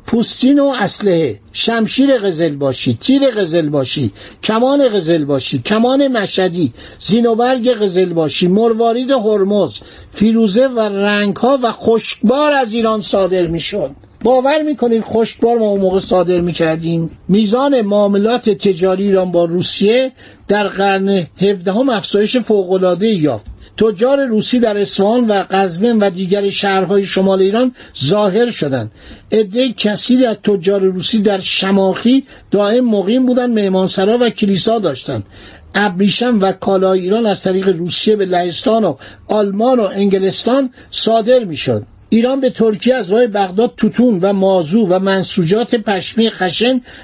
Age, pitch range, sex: 60-79, 190-230 Hz, male